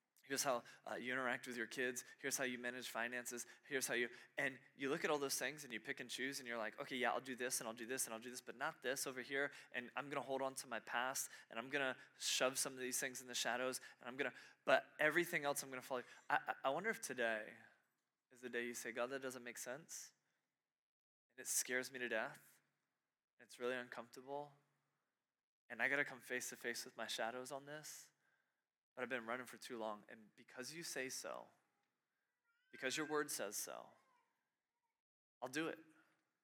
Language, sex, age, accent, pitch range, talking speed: English, male, 20-39, American, 120-135 Hz, 220 wpm